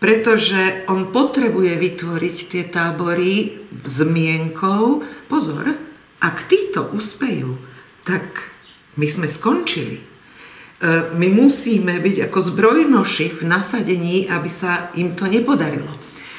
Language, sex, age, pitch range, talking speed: Slovak, female, 50-69, 160-200 Hz, 105 wpm